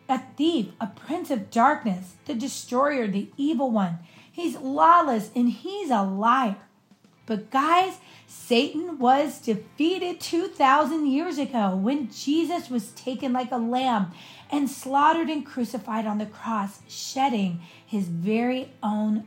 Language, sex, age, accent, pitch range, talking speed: English, female, 40-59, American, 215-295 Hz, 135 wpm